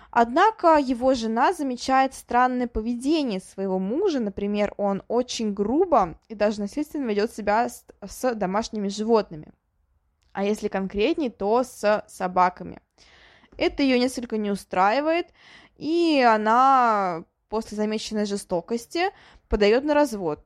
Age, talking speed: 20-39, 115 wpm